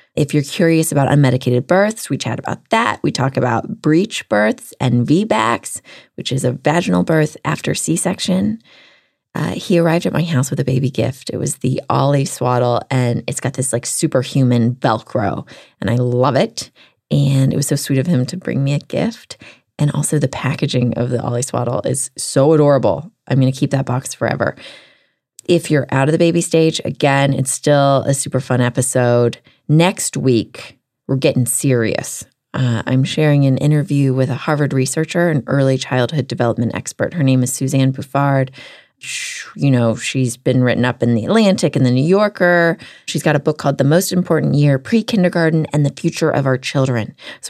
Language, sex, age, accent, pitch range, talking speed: English, female, 20-39, American, 125-160 Hz, 185 wpm